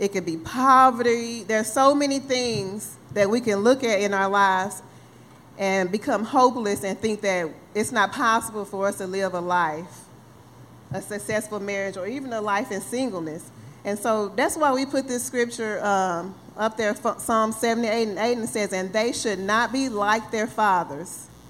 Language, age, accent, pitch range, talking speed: English, 40-59, American, 195-240 Hz, 185 wpm